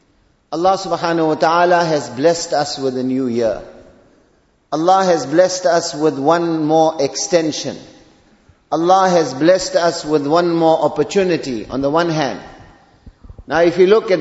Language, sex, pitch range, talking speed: English, male, 150-180 Hz, 150 wpm